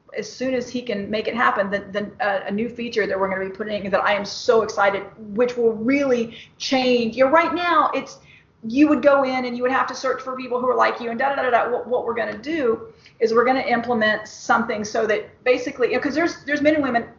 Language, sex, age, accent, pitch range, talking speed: English, female, 40-59, American, 225-275 Hz, 265 wpm